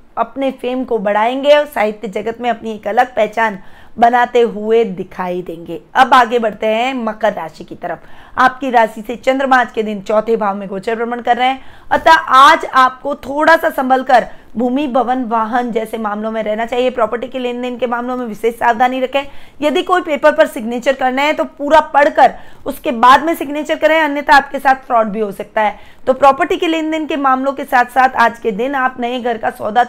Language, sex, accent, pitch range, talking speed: Hindi, female, native, 220-270 Hz, 205 wpm